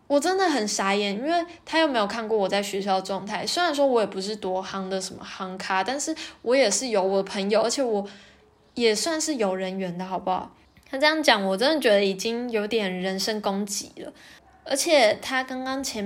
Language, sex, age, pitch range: Chinese, female, 10-29, 195-255 Hz